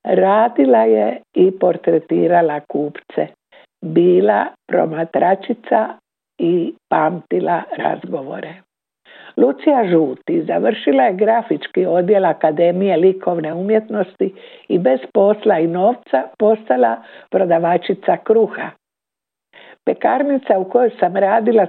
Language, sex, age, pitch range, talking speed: Croatian, female, 60-79, 165-220 Hz, 90 wpm